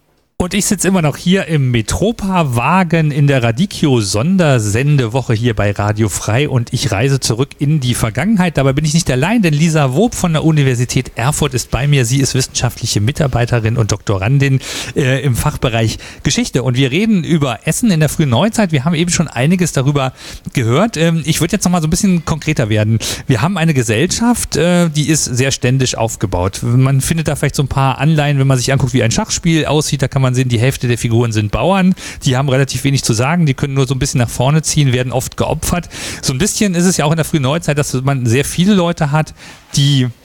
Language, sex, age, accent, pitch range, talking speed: German, male, 40-59, German, 120-160 Hz, 220 wpm